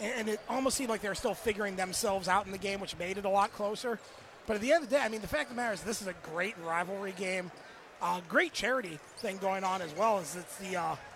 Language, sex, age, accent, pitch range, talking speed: English, male, 30-49, American, 185-235 Hz, 285 wpm